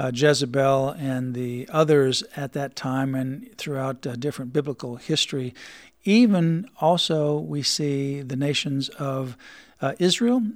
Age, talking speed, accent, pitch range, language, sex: 50-69, 130 wpm, American, 140-165 Hz, English, male